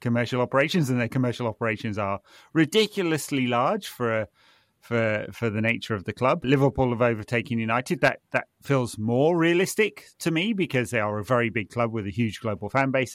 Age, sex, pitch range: 30-49, male, 105-125 Hz